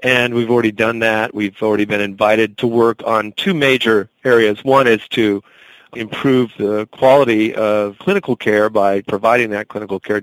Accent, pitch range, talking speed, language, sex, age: American, 100-120 Hz, 170 wpm, English, male, 40-59